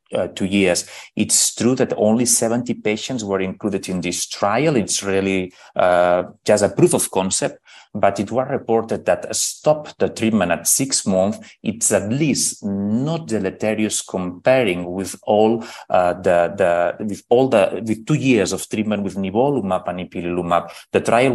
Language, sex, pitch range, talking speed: English, male, 95-125 Hz, 165 wpm